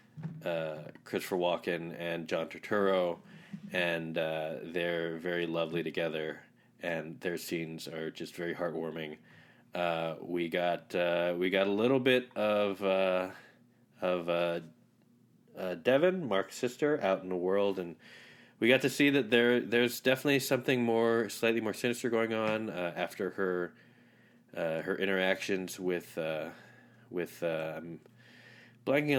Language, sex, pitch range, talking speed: English, male, 85-115 Hz, 140 wpm